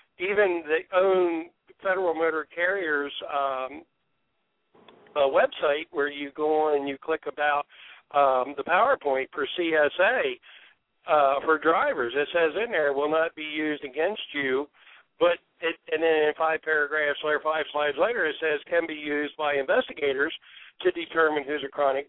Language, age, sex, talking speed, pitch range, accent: English, 60-79, male, 160 wpm, 145-165 Hz, American